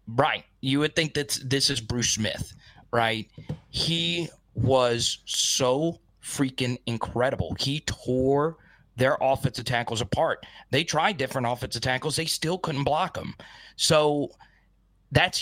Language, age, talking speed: English, 30-49, 130 wpm